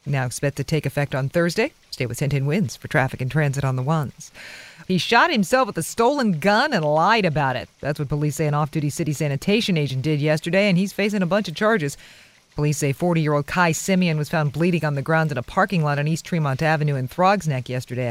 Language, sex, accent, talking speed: English, female, American, 235 wpm